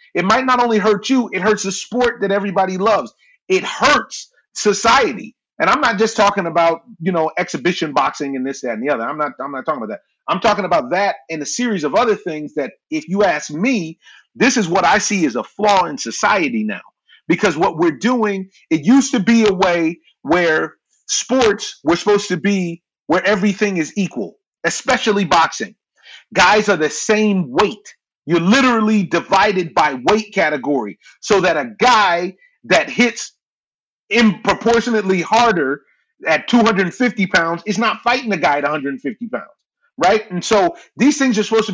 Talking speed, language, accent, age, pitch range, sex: 180 wpm, English, American, 30-49, 185-240 Hz, male